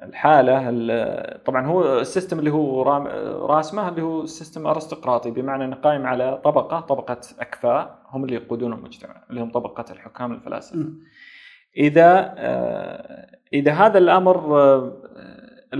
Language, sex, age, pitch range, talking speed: Arabic, male, 20-39, 125-170 Hz, 130 wpm